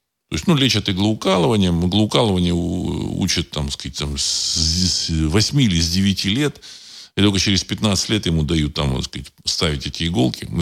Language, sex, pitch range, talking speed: Russian, male, 80-130 Hz, 170 wpm